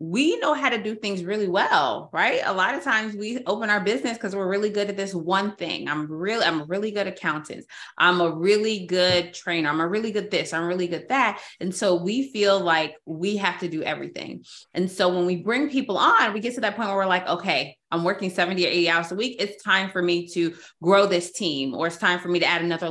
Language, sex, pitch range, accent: English, female, 170-210 Hz, American